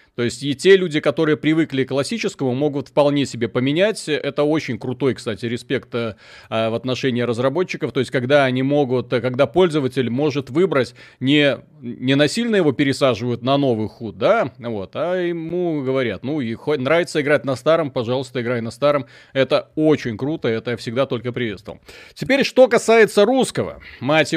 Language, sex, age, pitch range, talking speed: Russian, male, 30-49, 125-160 Hz, 165 wpm